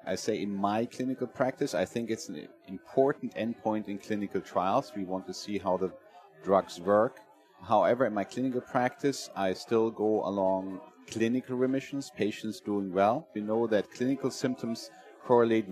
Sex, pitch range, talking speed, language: male, 95-120 Hz, 165 wpm, English